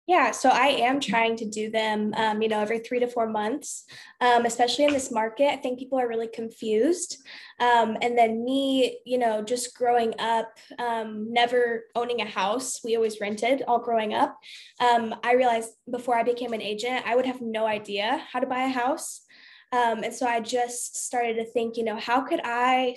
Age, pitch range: 10-29, 225-250 Hz